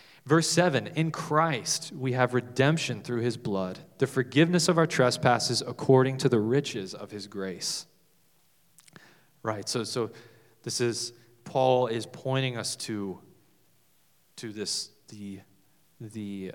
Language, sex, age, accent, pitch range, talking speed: English, male, 20-39, American, 110-145 Hz, 130 wpm